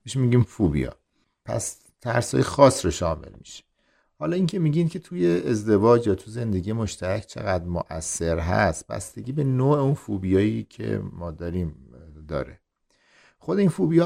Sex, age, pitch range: male, 50-69, 90-120 Hz